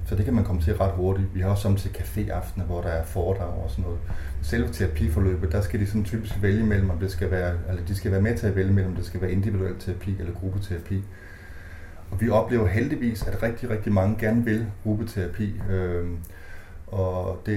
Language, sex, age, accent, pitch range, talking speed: Danish, male, 30-49, native, 90-105 Hz, 210 wpm